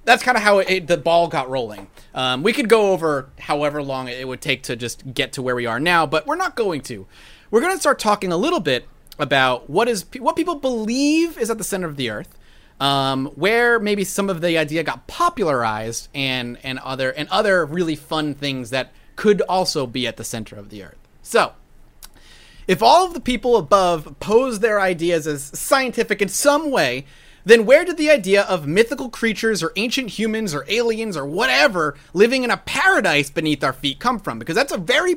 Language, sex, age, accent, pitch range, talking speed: English, male, 30-49, American, 135-225 Hz, 210 wpm